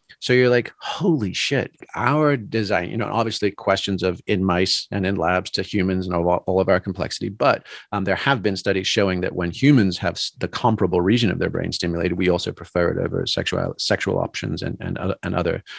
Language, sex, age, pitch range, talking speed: English, male, 40-59, 95-120 Hz, 205 wpm